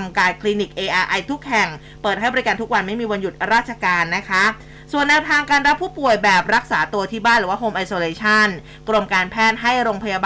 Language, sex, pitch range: Thai, female, 195-240 Hz